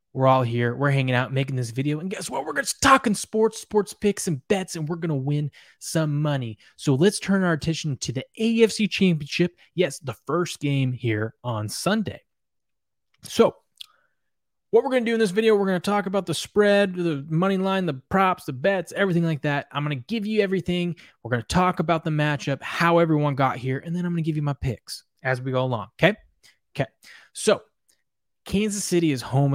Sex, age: male, 20-39